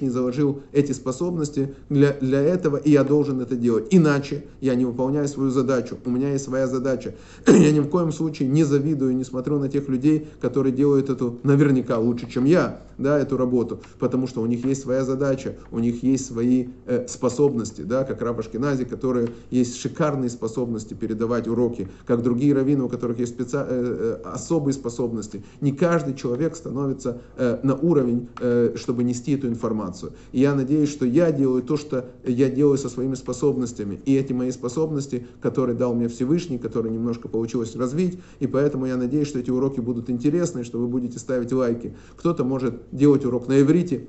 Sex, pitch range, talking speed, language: male, 125-145 Hz, 190 wpm, Russian